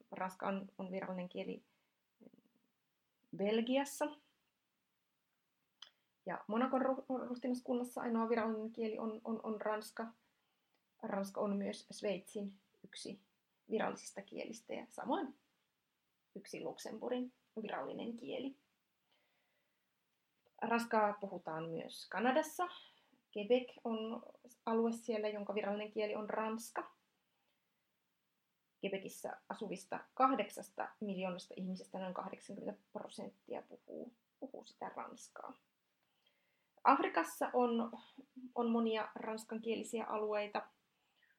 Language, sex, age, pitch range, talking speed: Finnish, female, 30-49, 210-250 Hz, 85 wpm